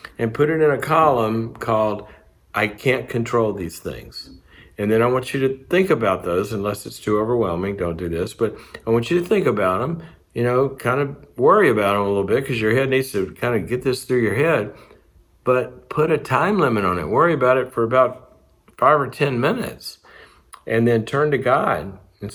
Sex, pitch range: male, 90-125 Hz